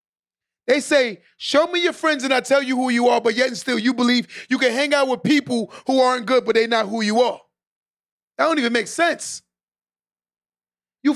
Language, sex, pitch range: English, male, 205-260 Hz